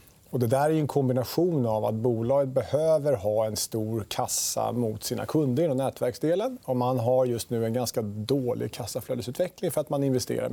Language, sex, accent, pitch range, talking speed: Swedish, male, Norwegian, 120-150 Hz, 185 wpm